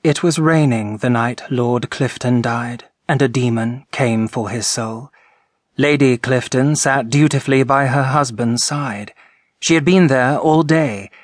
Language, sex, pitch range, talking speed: English, male, 120-140 Hz, 155 wpm